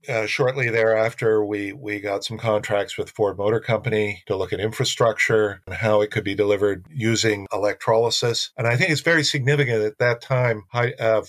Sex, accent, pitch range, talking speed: male, American, 100-120 Hz, 185 wpm